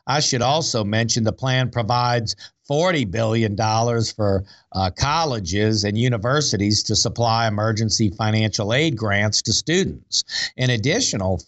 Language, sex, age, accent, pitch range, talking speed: English, male, 50-69, American, 100-130 Hz, 125 wpm